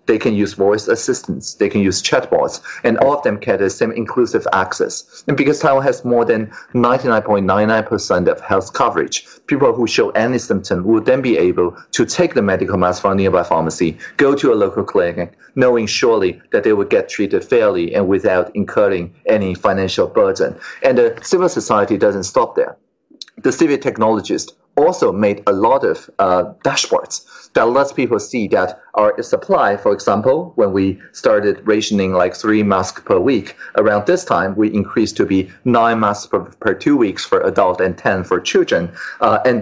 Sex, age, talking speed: male, 40-59, 180 wpm